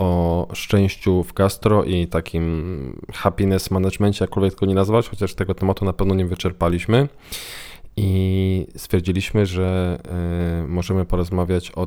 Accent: native